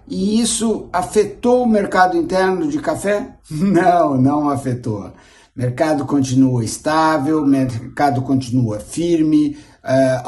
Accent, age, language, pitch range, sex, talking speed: Brazilian, 60-79, Portuguese, 140-195 Hz, male, 115 wpm